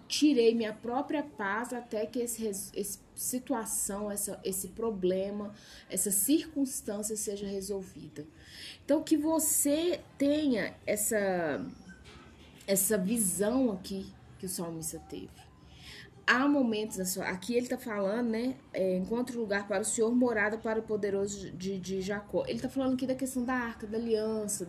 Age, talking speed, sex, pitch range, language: 20-39, 145 wpm, female, 195-245 Hz, Portuguese